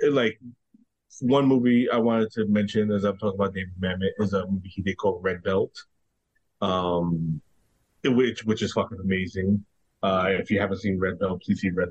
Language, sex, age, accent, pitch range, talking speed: English, male, 30-49, American, 105-140 Hz, 185 wpm